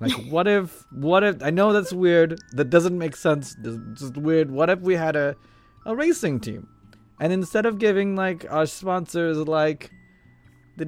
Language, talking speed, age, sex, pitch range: English, 175 wpm, 20-39, male, 110-165 Hz